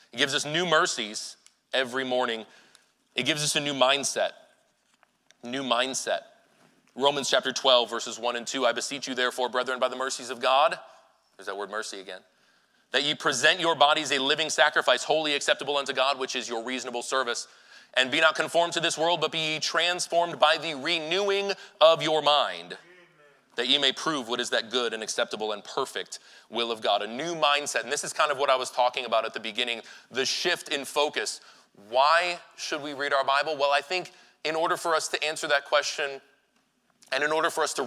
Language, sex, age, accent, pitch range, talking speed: English, male, 30-49, American, 125-155 Hz, 205 wpm